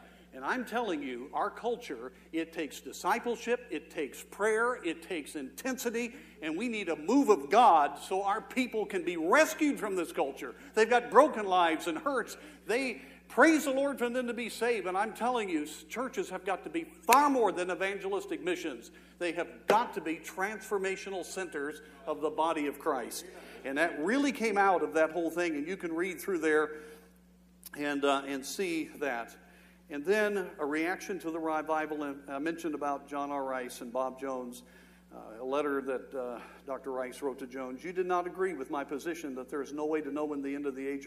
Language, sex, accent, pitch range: English, male, American, 140-200 Hz